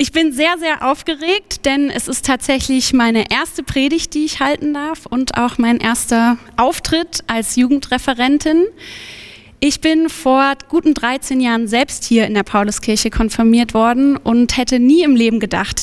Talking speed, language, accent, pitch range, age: 160 wpm, German, German, 225-275 Hz, 20-39